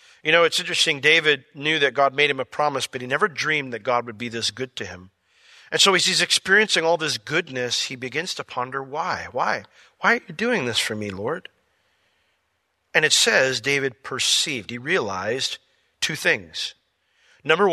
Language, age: English, 40-59